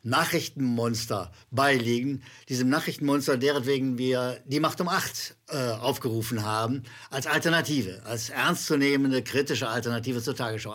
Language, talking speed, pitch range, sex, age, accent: German, 115 wpm, 120-170 Hz, male, 60-79, German